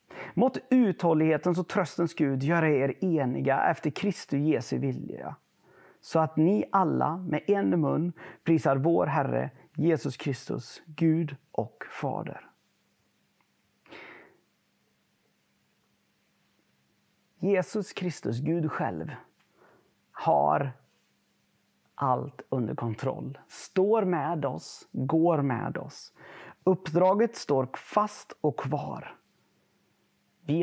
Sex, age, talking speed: male, 40-59, 90 wpm